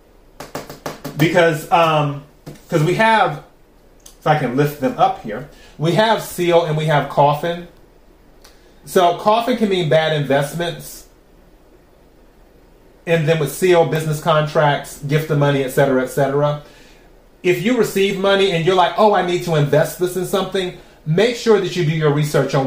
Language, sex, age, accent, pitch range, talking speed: English, male, 30-49, American, 145-175 Hz, 155 wpm